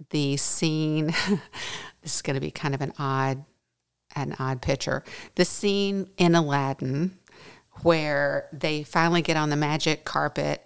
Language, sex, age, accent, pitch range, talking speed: English, female, 50-69, American, 140-180 Hz, 145 wpm